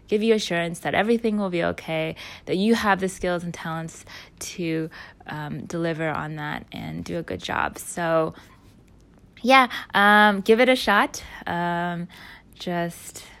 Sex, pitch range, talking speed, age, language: female, 165-210 Hz, 150 wpm, 20-39, English